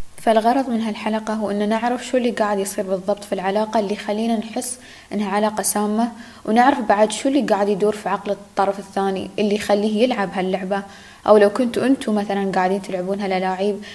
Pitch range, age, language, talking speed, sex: 200-230 Hz, 10-29, Arabic, 175 wpm, female